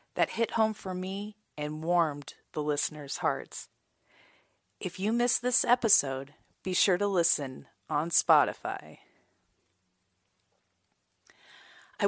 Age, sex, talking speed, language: 40-59, female, 110 wpm, English